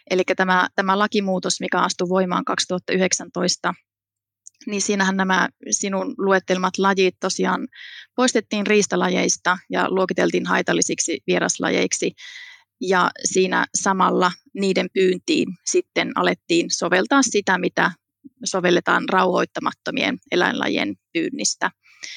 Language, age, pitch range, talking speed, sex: Finnish, 30-49, 185-210 Hz, 95 wpm, female